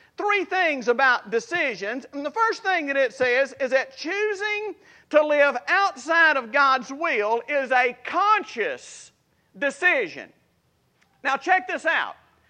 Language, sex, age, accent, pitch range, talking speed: English, male, 50-69, American, 270-375 Hz, 135 wpm